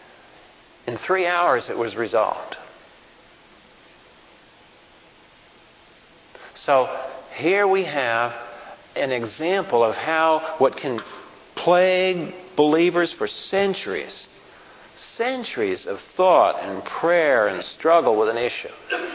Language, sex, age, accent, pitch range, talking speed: English, male, 50-69, American, 130-190 Hz, 95 wpm